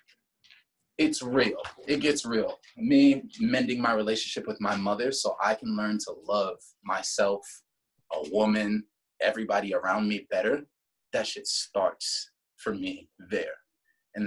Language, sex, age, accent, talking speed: English, male, 20-39, American, 135 wpm